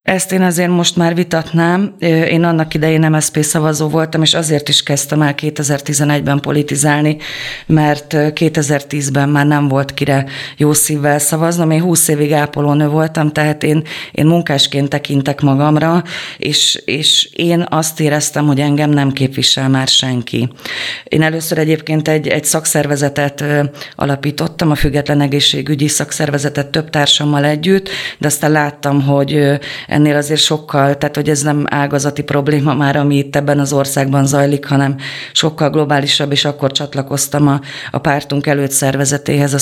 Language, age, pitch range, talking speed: Hungarian, 30-49, 145-160 Hz, 145 wpm